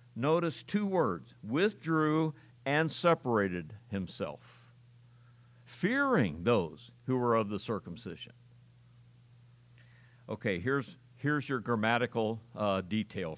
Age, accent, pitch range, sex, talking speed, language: 60-79, American, 115-150 Hz, male, 95 wpm, English